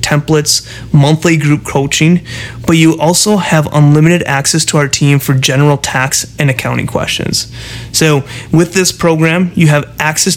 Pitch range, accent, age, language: 130-155 Hz, American, 30-49, English